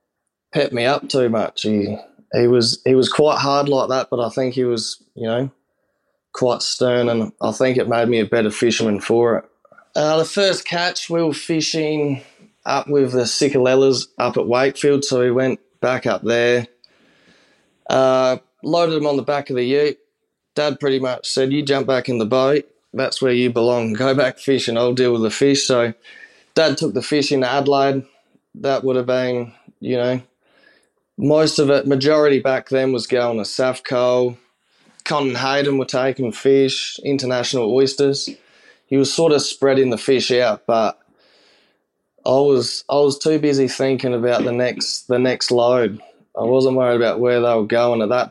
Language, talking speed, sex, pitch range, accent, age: English, 185 wpm, male, 120-140 Hz, Australian, 20-39